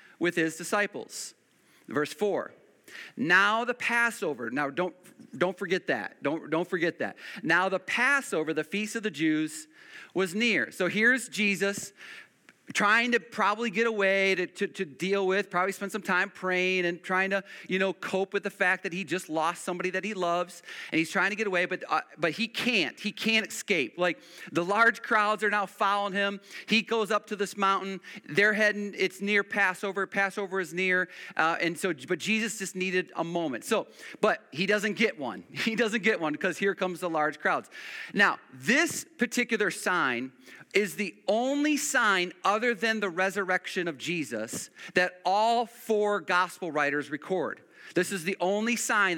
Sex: male